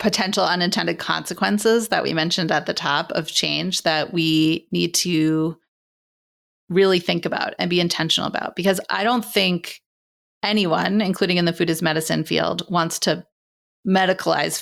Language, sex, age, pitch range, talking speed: English, female, 30-49, 165-205 Hz, 150 wpm